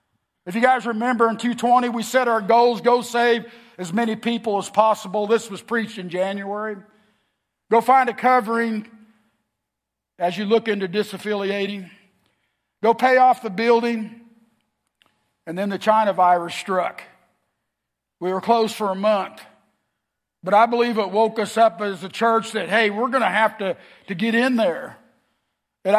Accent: American